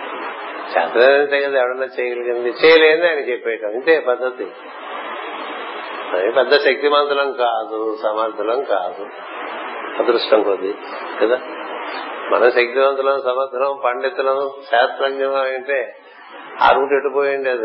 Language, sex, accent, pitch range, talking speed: Telugu, male, native, 130-145 Hz, 80 wpm